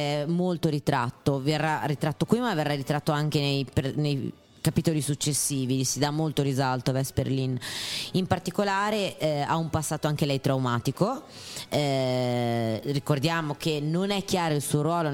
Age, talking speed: 30-49, 150 wpm